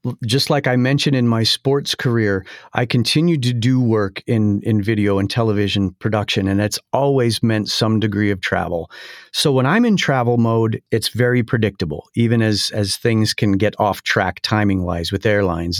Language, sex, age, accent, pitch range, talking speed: English, male, 50-69, American, 105-130 Hz, 180 wpm